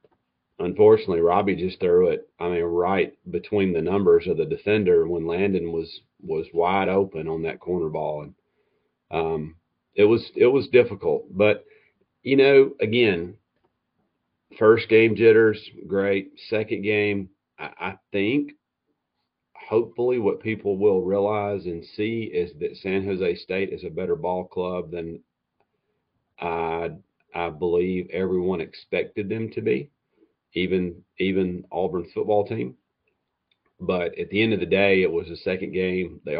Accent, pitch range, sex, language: American, 90-145 Hz, male, English